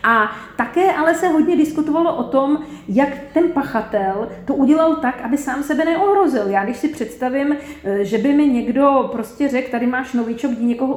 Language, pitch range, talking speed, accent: Czech, 230-285 Hz, 180 wpm, native